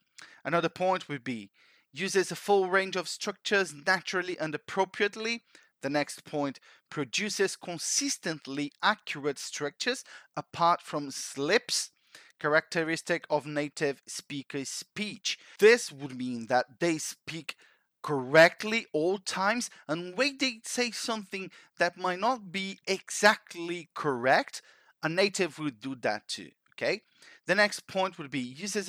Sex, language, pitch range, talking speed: male, English, 150-195 Hz, 125 wpm